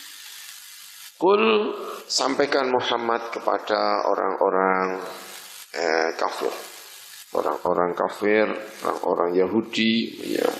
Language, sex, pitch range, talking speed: Indonesian, male, 100-150 Hz, 60 wpm